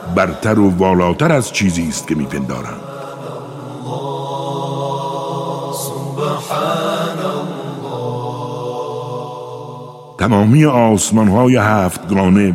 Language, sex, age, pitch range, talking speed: Persian, male, 60-79, 95-140 Hz, 55 wpm